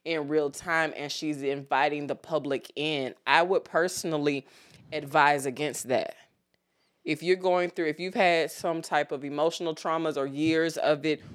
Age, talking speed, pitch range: 20-39, 165 wpm, 145-175 Hz